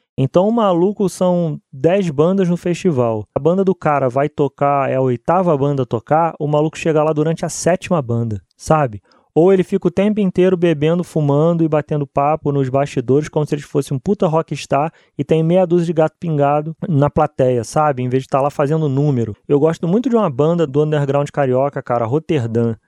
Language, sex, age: Portuguese, male, 20-39